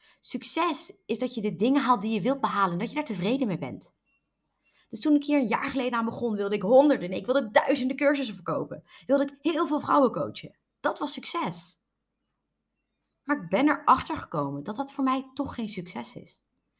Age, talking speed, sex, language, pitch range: 30-49, 205 wpm, female, Dutch, 180-265 Hz